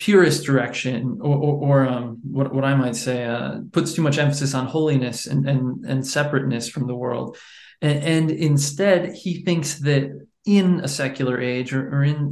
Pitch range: 125-150 Hz